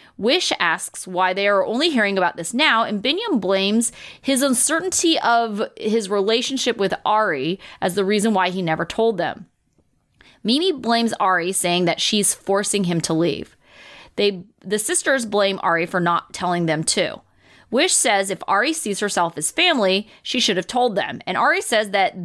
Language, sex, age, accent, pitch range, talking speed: English, female, 30-49, American, 185-270 Hz, 175 wpm